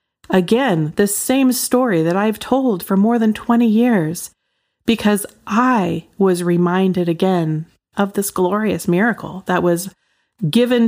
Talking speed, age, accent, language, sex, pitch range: 130 wpm, 40-59, American, English, female, 175-210 Hz